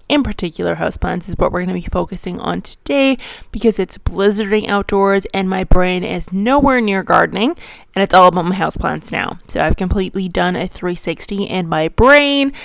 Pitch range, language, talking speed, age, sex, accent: 180-250 Hz, English, 185 wpm, 20-39, female, American